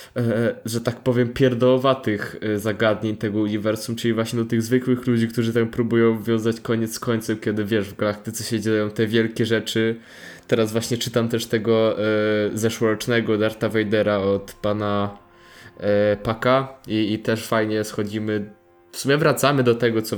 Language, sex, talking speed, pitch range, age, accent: Polish, male, 160 wpm, 110-120 Hz, 20-39, native